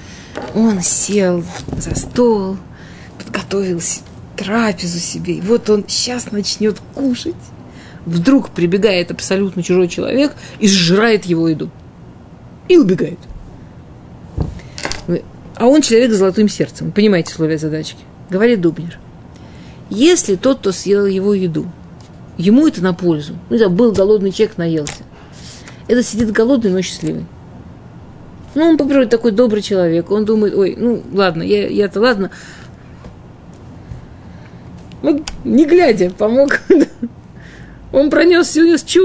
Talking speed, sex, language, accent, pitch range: 120 wpm, female, Russian, native, 180-240 Hz